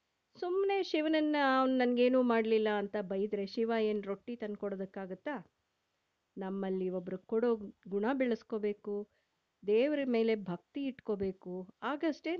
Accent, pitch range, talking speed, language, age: native, 200-260 Hz, 100 wpm, Kannada, 50-69